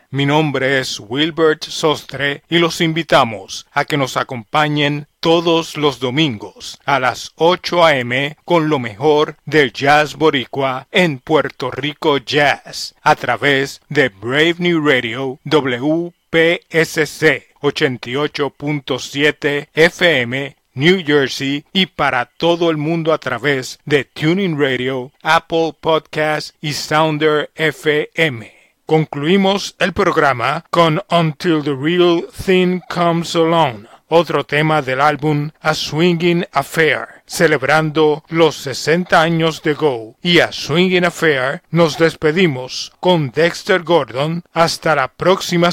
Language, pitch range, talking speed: Spanish, 140-165 Hz, 120 wpm